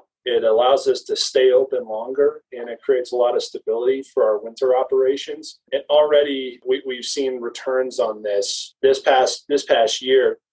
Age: 30-49